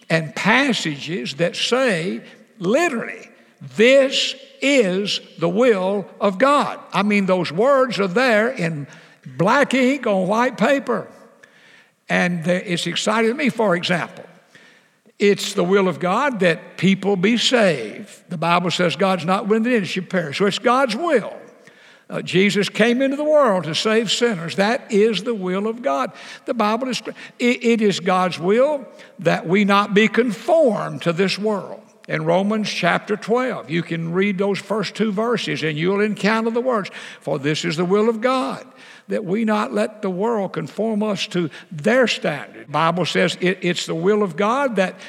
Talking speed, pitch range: 170 wpm, 185-235 Hz